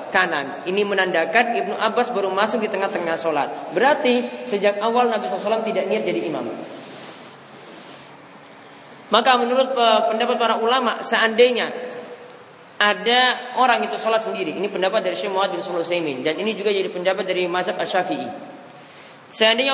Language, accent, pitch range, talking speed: Indonesian, native, 205-240 Hz, 135 wpm